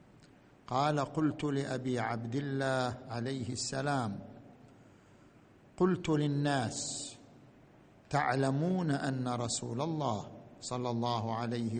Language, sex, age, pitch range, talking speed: Arabic, male, 50-69, 125-155 Hz, 80 wpm